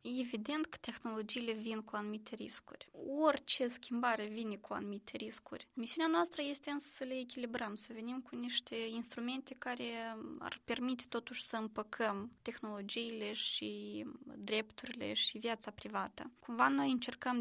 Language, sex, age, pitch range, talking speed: Romanian, female, 20-39, 215-250 Hz, 135 wpm